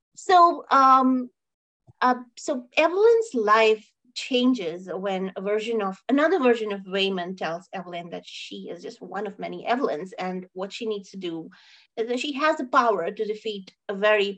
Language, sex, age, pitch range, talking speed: English, female, 30-49, 205-255 Hz, 170 wpm